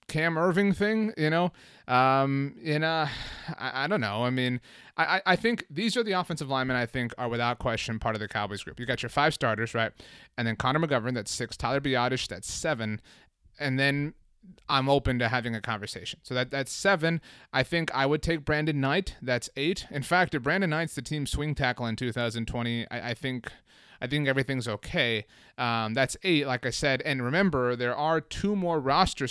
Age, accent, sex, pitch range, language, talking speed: 30-49, American, male, 120-150 Hz, English, 205 wpm